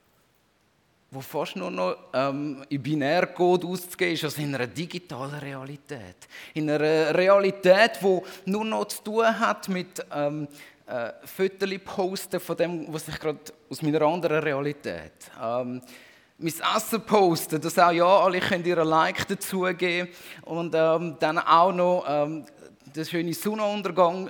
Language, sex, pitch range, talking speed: German, male, 145-185 Hz, 155 wpm